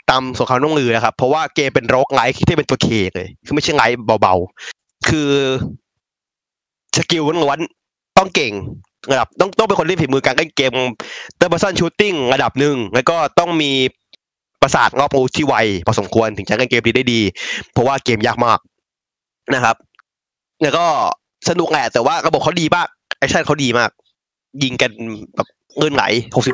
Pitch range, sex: 115-150 Hz, male